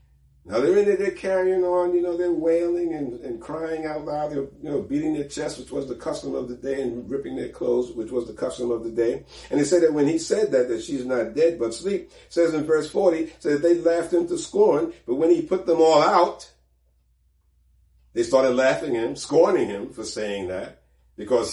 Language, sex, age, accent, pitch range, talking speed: English, male, 50-69, American, 100-170 Hz, 220 wpm